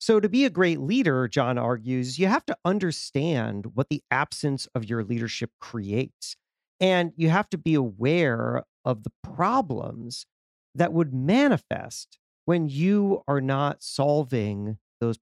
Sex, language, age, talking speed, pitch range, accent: male, English, 40-59, 145 wpm, 120-175 Hz, American